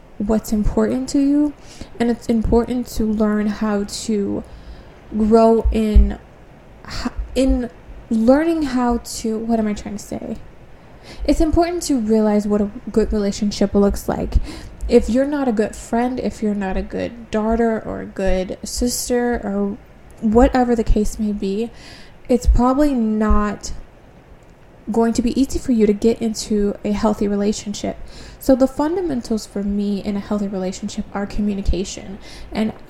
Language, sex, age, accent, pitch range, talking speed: English, female, 20-39, American, 205-240 Hz, 150 wpm